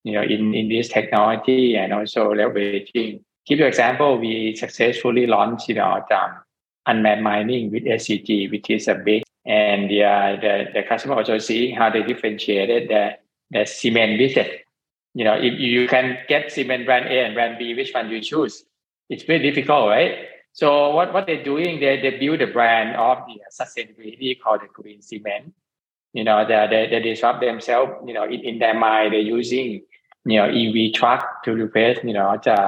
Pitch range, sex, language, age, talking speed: 105-125 Hz, male, English, 20-39, 190 wpm